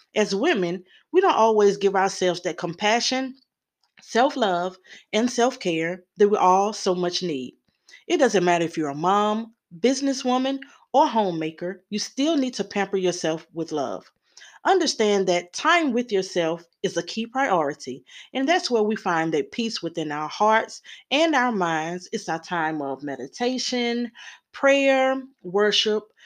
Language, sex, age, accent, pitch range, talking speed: English, female, 30-49, American, 175-235 Hz, 150 wpm